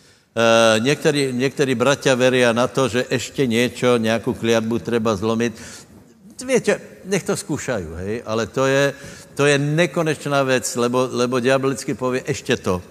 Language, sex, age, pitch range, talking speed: Slovak, male, 70-89, 110-130 Hz, 145 wpm